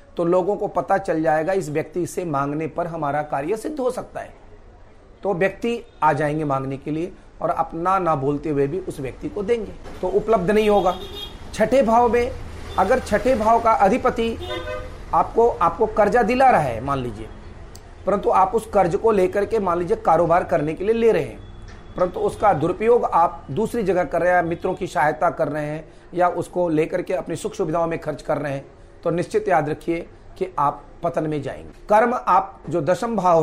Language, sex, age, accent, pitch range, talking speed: Hindi, male, 40-59, native, 150-195 Hz, 200 wpm